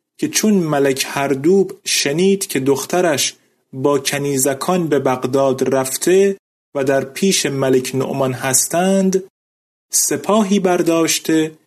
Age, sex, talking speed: 30-49, male, 105 wpm